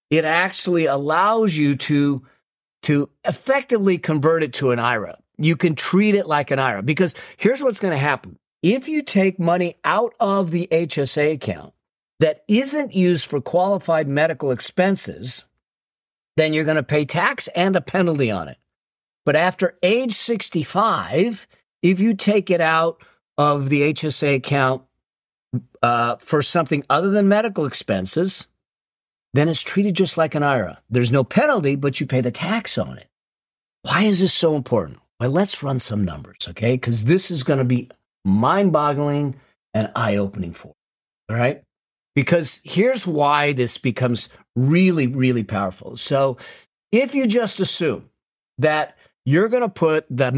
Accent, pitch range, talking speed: American, 135-180 Hz, 155 wpm